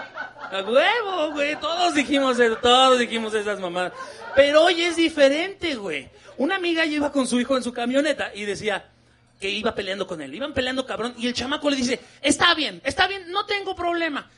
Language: Spanish